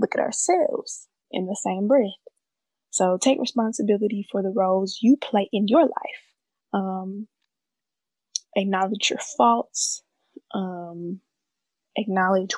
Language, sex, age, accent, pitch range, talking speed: English, female, 10-29, American, 195-255 Hz, 115 wpm